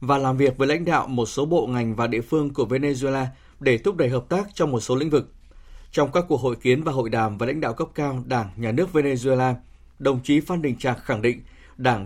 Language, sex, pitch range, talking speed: Vietnamese, male, 120-165 Hz, 250 wpm